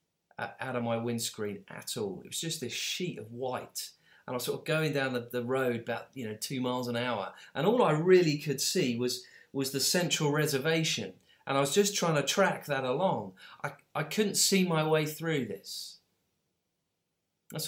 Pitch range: 125-175 Hz